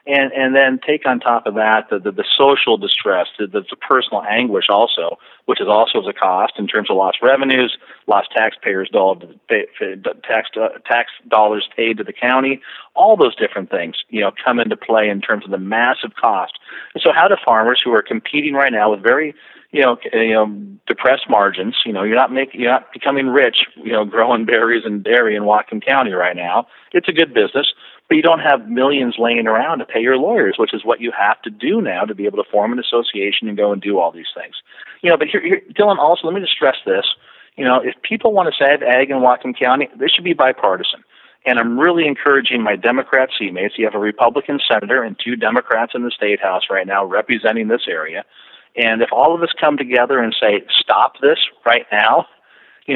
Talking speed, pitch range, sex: 225 wpm, 110-150 Hz, male